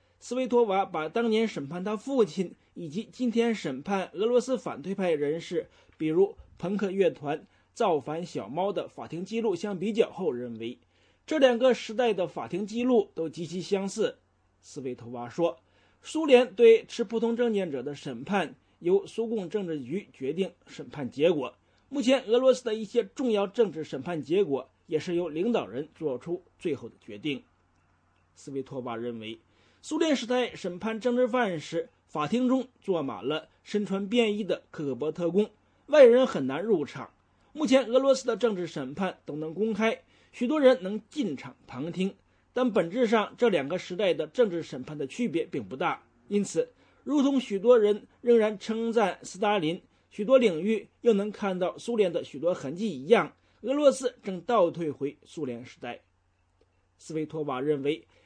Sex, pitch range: male, 155-240 Hz